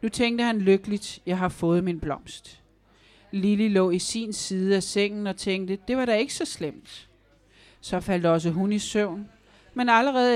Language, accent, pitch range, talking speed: Danish, native, 180-225 Hz, 185 wpm